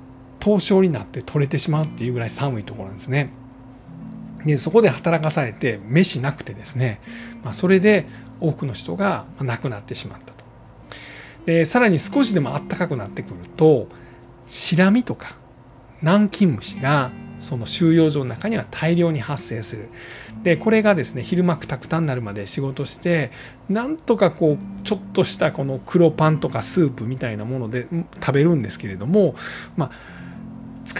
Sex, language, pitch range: male, Japanese, 120-175 Hz